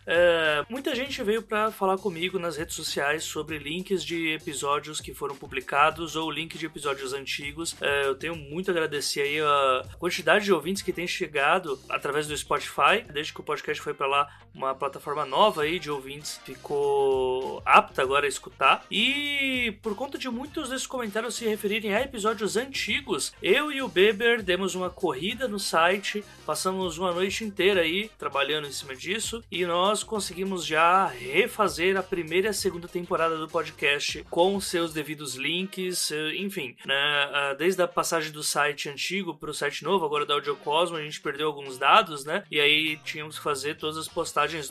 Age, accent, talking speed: 20-39, Brazilian, 175 wpm